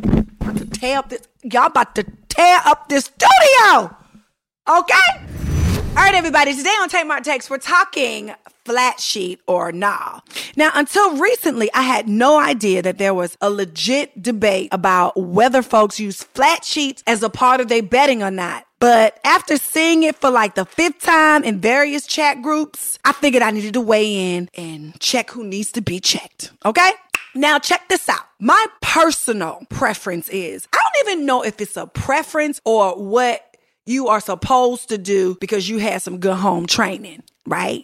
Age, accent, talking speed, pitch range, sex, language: 30-49, American, 175 wpm, 215-300 Hz, female, English